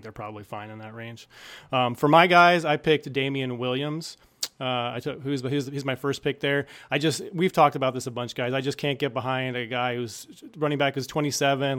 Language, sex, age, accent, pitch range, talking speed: English, male, 30-49, American, 120-140 Hz, 230 wpm